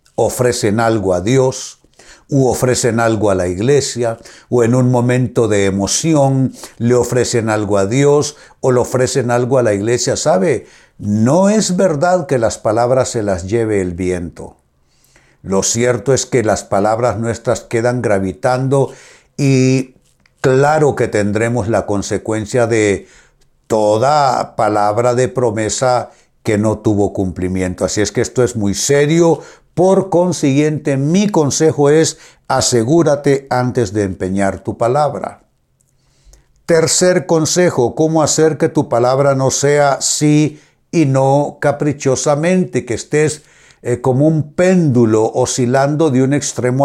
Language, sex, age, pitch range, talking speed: Spanish, male, 60-79, 110-145 Hz, 135 wpm